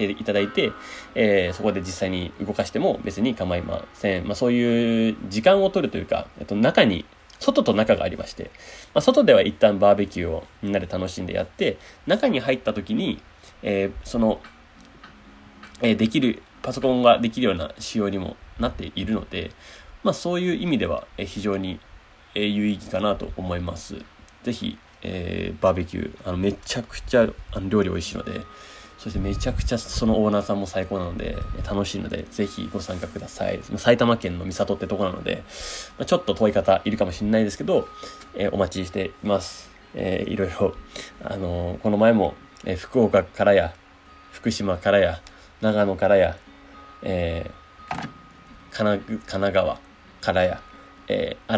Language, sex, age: Japanese, male, 20-39